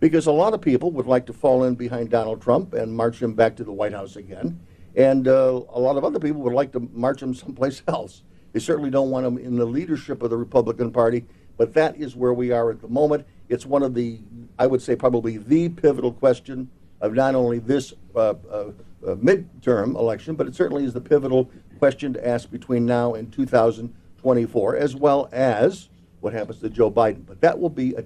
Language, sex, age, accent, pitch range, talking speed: English, male, 60-79, American, 115-145 Hz, 220 wpm